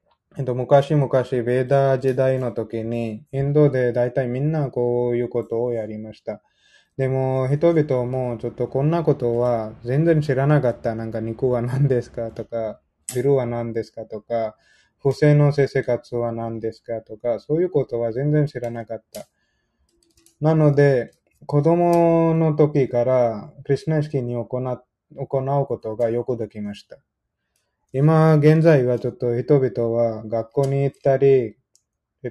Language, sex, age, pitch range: Japanese, male, 20-39, 115-145 Hz